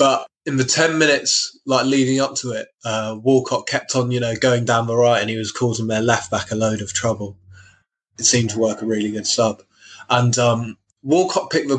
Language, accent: English, British